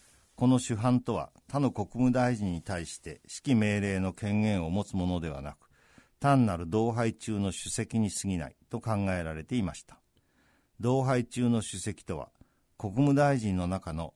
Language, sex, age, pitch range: Japanese, male, 50-69, 90-120 Hz